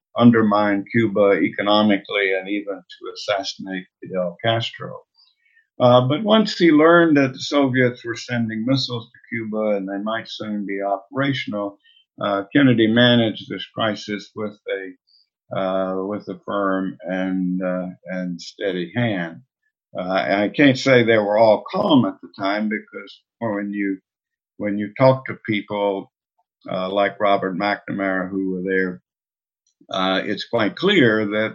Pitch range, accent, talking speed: 95-125 Hz, American, 145 wpm